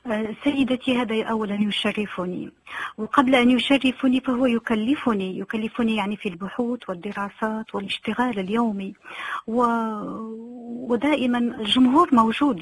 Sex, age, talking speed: female, 40-59, 95 wpm